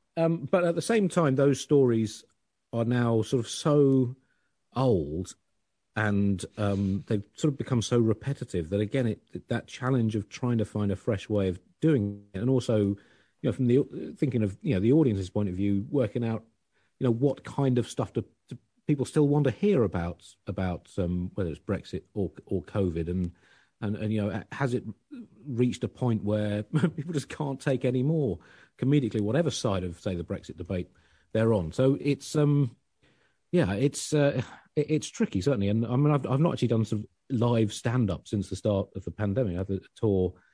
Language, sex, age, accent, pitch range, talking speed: English, male, 40-59, British, 100-135 Hz, 195 wpm